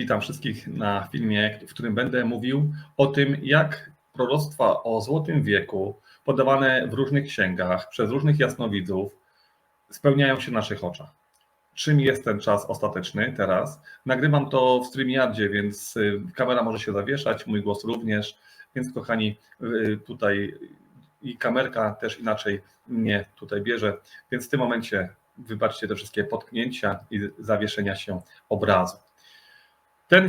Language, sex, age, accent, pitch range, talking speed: Polish, male, 30-49, native, 105-135 Hz, 135 wpm